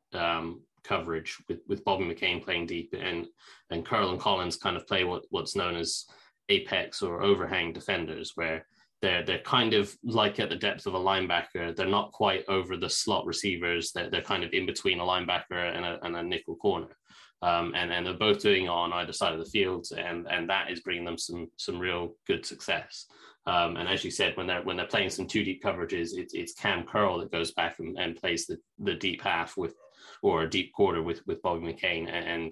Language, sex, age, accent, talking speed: English, male, 20-39, British, 220 wpm